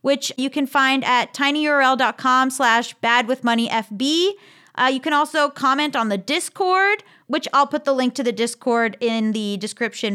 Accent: American